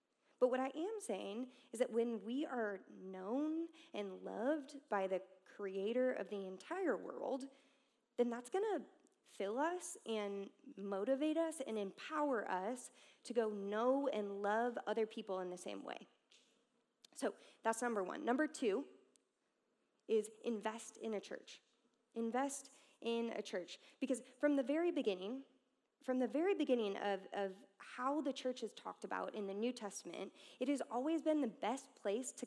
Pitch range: 210-275 Hz